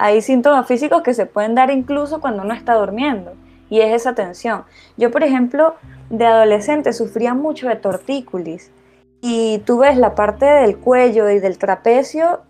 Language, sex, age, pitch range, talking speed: Spanish, female, 20-39, 195-255 Hz, 170 wpm